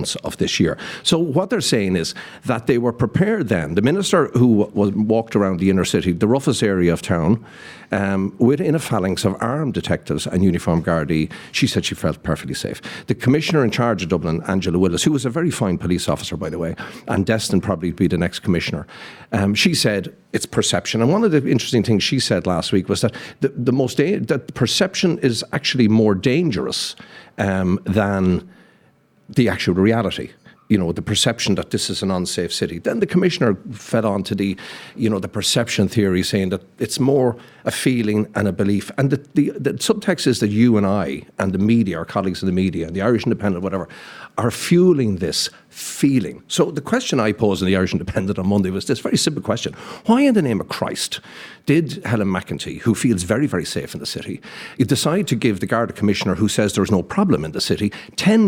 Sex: male